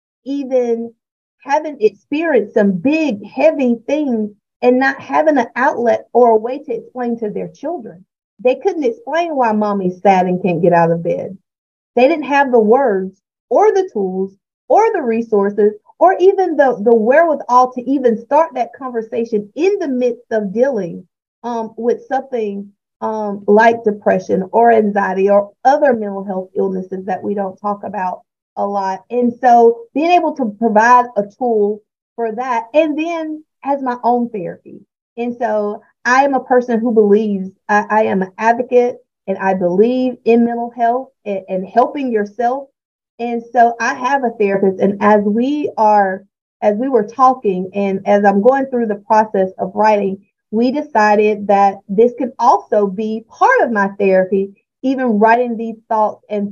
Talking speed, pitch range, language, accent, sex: 165 wpm, 205-255 Hz, English, American, female